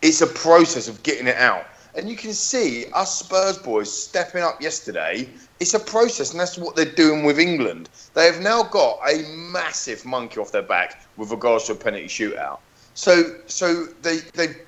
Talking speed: 190 wpm